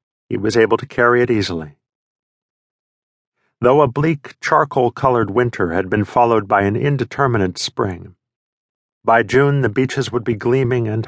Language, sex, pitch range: English, male, 110-130 Hz